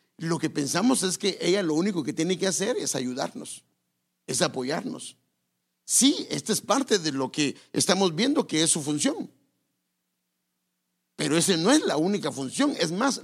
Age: 50-69